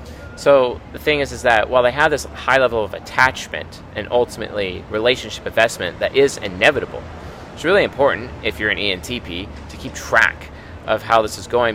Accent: American